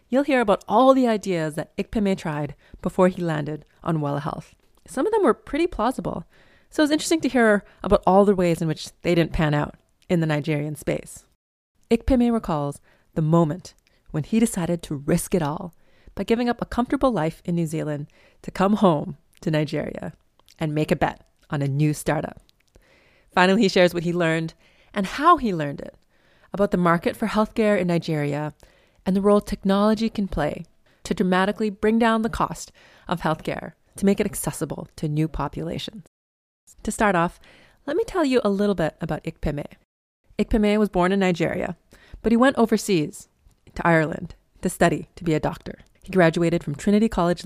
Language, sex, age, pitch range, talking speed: English, female, 30-49, 155-210 Hz, 185 wpm